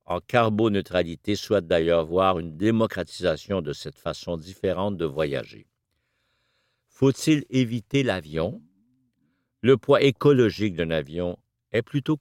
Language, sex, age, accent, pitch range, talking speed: French, male, 60-79, French, 85-130 Hz, 115 wpm